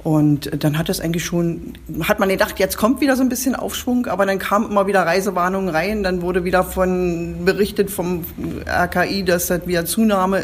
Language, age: German, 40-59